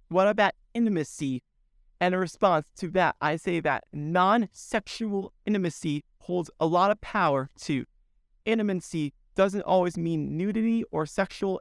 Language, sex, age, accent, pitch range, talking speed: English, male, 30-49, American, 160-200 Hz, 135 wpm